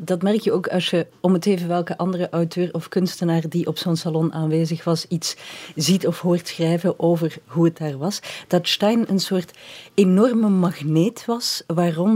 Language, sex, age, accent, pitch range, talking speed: Dutch, female, 40-59, Dutch, 165-210 Hz, 190 wpm